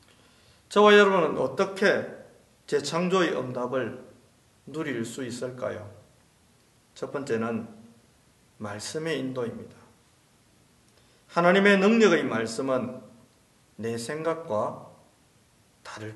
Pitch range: 120-180 Hz